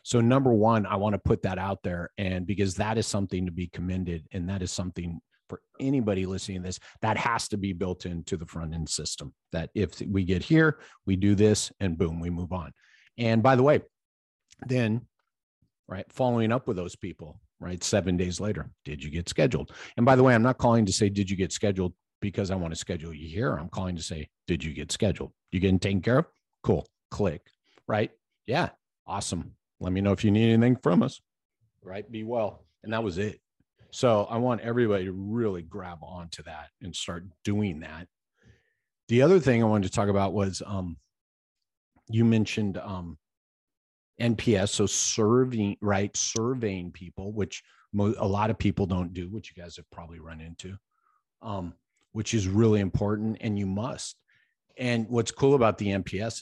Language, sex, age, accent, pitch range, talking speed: English, male, 40-59, American, 90-110 Hz, 195 wpm